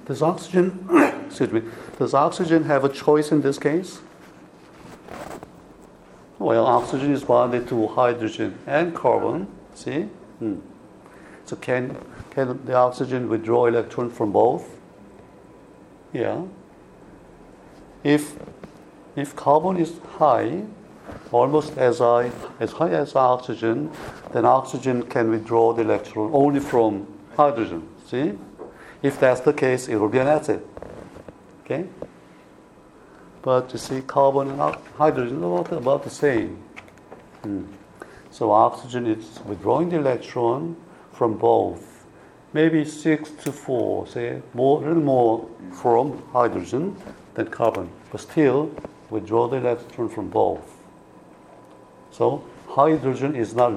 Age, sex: 60-79, male